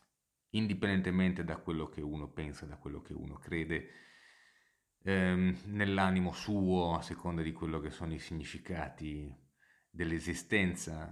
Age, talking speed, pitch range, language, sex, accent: 30-49, 125 wpm, 80-90 Hz, Italian, male, native